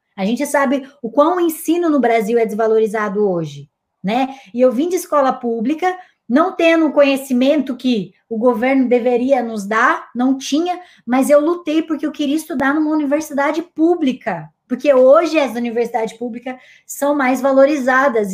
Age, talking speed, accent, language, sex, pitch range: 20-39, 155 wpm, Brazilian, Portuguese, female, 235-305 Hz